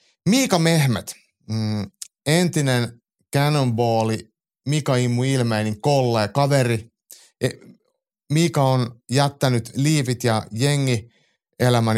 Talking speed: 80 wpm